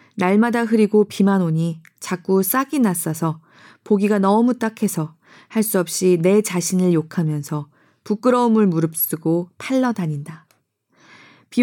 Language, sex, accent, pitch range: Korean, female, native, 165-225 Hz